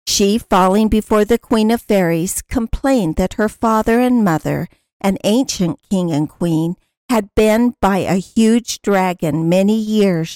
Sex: female